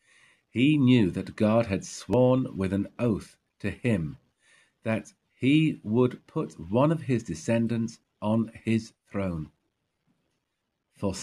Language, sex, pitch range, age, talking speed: English, male, 95-125 Hz, 50-69, 125 wpm